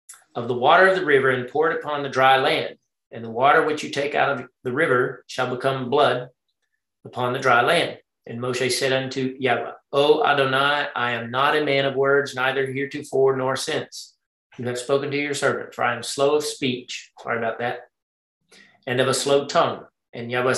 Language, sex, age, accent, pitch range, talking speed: English, male, 40-59, American, 130-150 Hz, 205 wpm